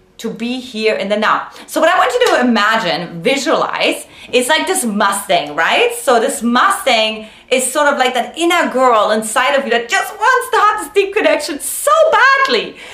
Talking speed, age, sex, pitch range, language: 195 wpm, 30-49, female, 225-320 Hz, English